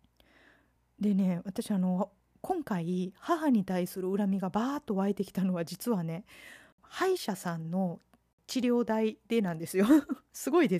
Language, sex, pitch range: Japanese, female, 180-240 Hz